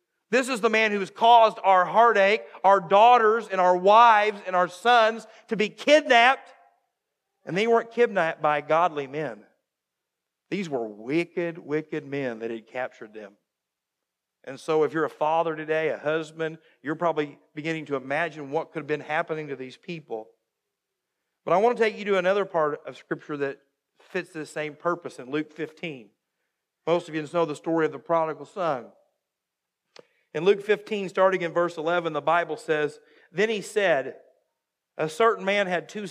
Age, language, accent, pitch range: 50-69, English, American, 155-190 Hz